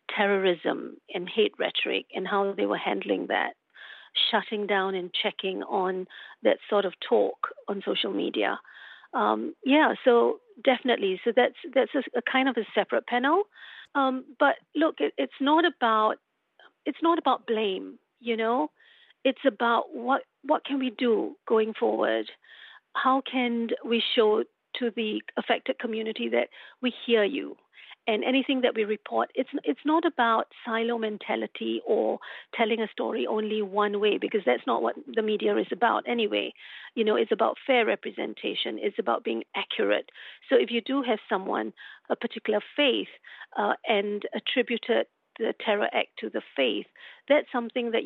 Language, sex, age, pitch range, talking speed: English, female, 50-69, 215-275 Hz, 160 wpm